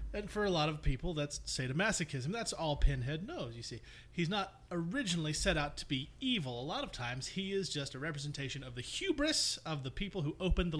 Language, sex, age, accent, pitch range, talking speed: English, male, 30-49, American, 130-195 Hz, 220 wpm